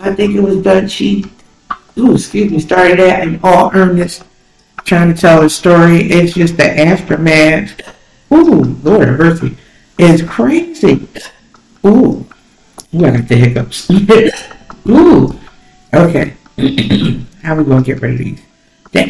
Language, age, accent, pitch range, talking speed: English, 60-79, American, 150-205 Hz, 150 wpm